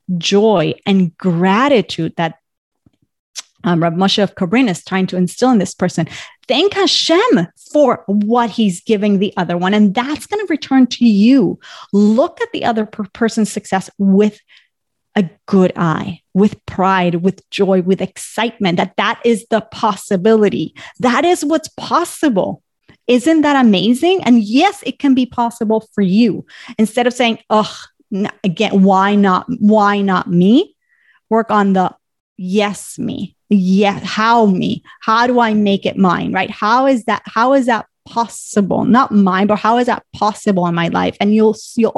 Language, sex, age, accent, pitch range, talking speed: English, female, 30-49, American, 190-240 Hz, 165 wpm